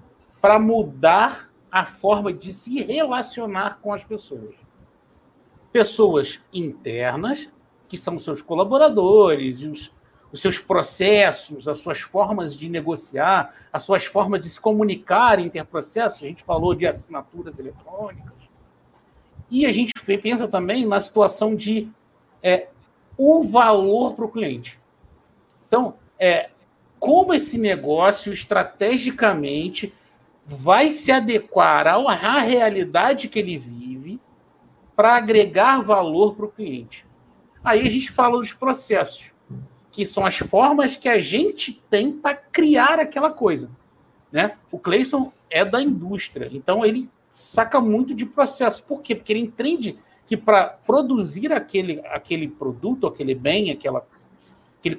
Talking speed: 125 wpm